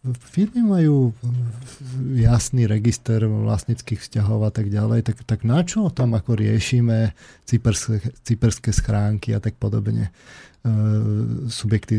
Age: 40-59